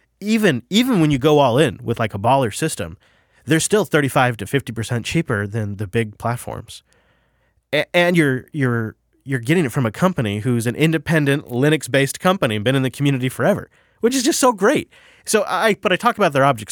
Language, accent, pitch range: English, American, 115-150 Hz